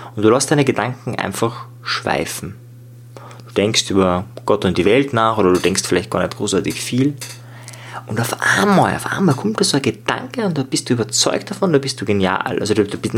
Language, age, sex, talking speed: German, 20-39, male, 210 wpm